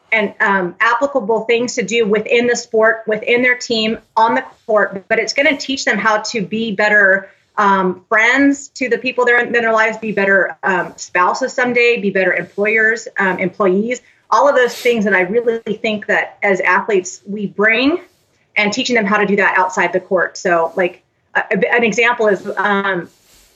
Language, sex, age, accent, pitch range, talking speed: English, female, 30-49, American, 195-235 Hz, 190 wpm